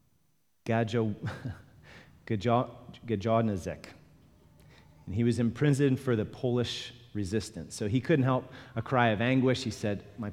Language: English